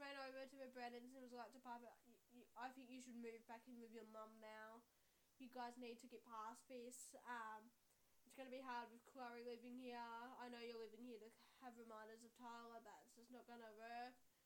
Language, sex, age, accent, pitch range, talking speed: English, female, 10-29, Australian, 235-285 Hz, 235 wpm